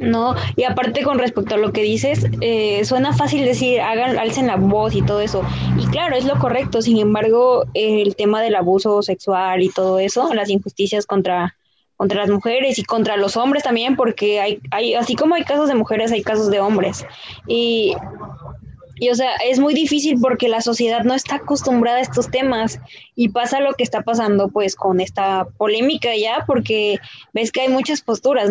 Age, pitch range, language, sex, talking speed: 20-39, 205-255 Hz, Spanish, female, 195 wpm